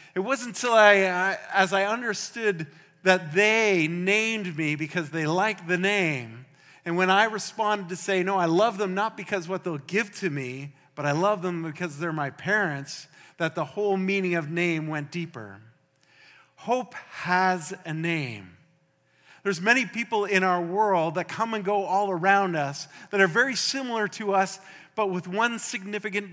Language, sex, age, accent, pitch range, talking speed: English, male, 40-59, American, 165-205 Hz, 175 wpm